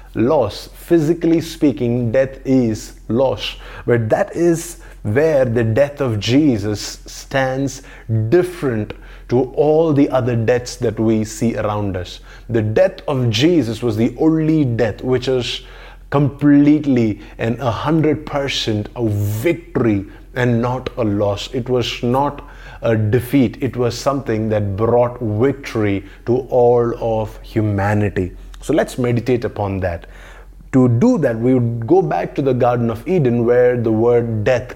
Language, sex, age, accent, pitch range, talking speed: English, male, 20-39, Indian, 110-140 Hz, 145 wpm